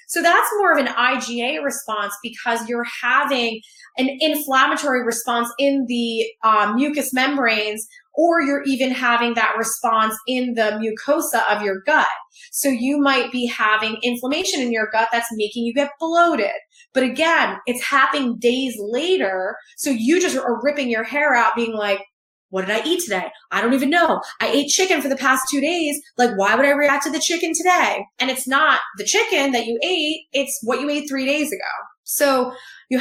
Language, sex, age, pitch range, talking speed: English, female, 20-39, 230-285 Hz, 185 wpm